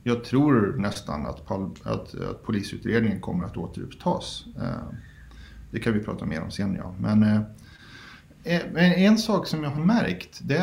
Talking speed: 160 wpm